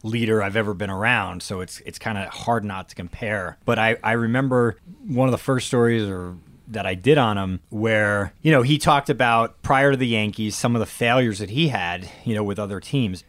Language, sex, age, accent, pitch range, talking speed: English, male, 30-49, American, 100-130 Hz, 230 wpm